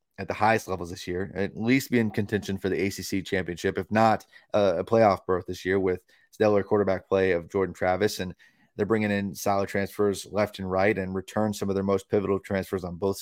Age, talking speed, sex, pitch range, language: 20-39, 220 wpm, male, 95-110 Hz, English